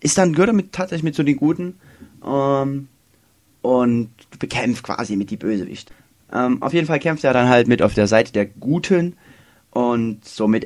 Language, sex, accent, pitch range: German, male, German, 105-135 Hz